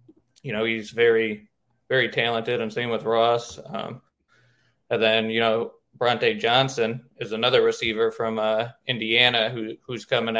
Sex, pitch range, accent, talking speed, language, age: male, 110-125 Hz, American, 150 wpm, English, 20-39